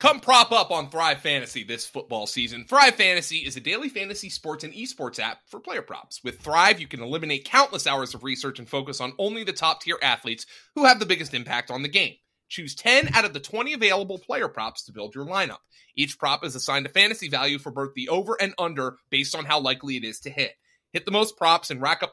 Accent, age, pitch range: American, 30-49, 130-205 Hz